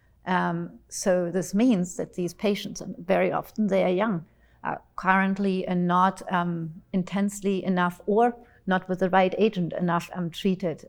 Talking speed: 160 wpm